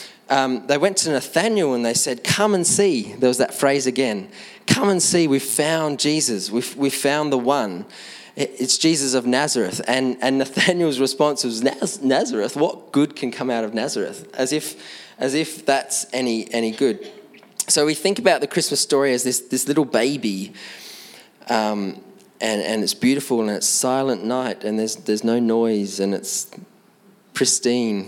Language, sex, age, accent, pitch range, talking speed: English, male, 20-39, Australian, 105-145 Hz, 175 wpm